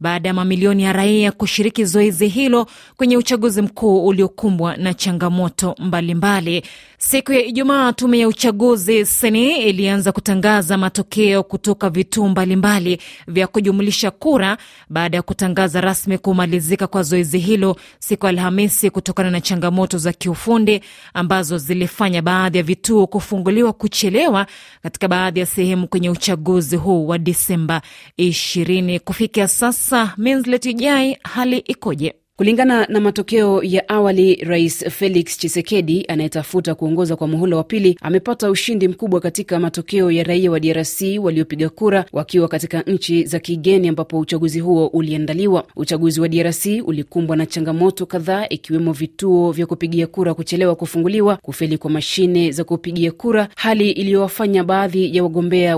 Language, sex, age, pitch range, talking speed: Swahili, female, 20-39, 170-205 Hz, 140 wpm